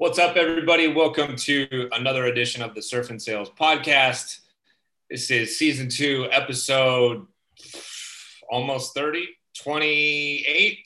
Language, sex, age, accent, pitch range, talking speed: English, male, 30-49, American, 115-145 Hz, 115 wpm